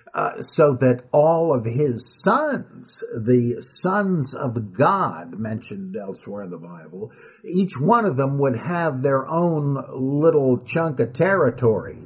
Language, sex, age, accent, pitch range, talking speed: English, male, 60-79, American, 120-150 Hz, 140 wpm